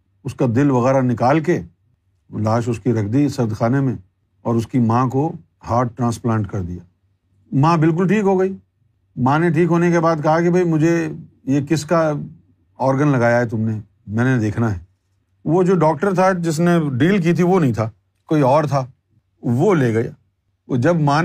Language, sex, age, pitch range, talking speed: Urdu, male, 50-69, 115-165 Hz, 200 wpm